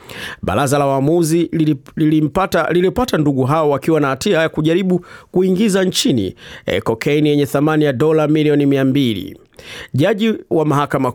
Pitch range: 135-165 Hz